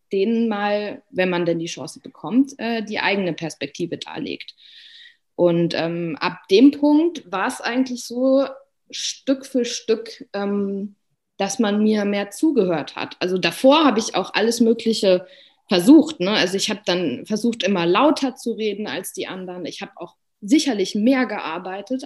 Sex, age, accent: female, 20-39, German